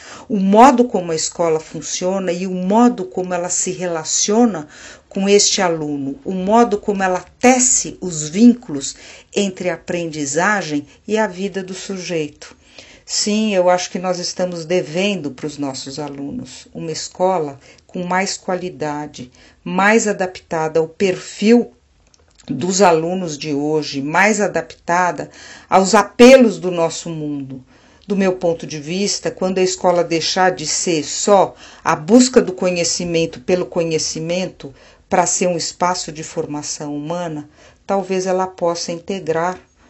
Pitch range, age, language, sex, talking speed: 155-190 Hz, 50-69, Portuguese, female, 135 wpm